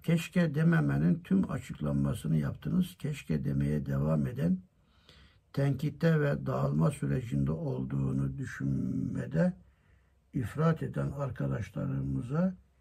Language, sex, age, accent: Turkish, male, 60-79, native